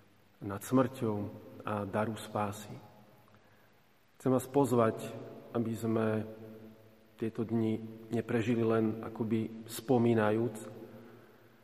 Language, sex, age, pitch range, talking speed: Slovak, male, 40-59, 110-125 Hz, 80 wpm